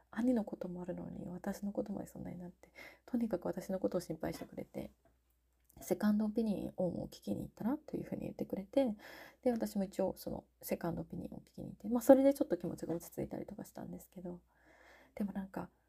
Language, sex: Japanese, female